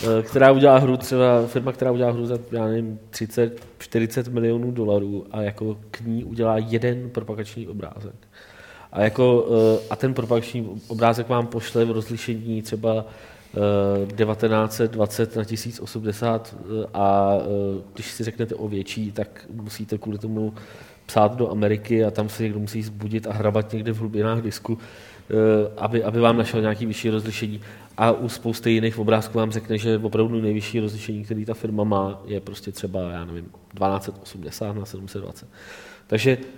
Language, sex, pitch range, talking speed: Czech, male, 105-115 Hz, 150 wpm